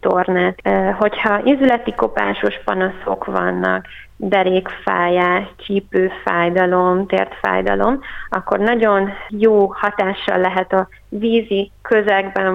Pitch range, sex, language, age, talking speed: 185-200 Hz, female, Hungarian, 30-49, 80 wpm